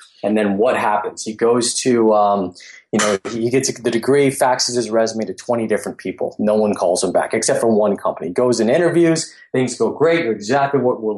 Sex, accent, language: male, American, English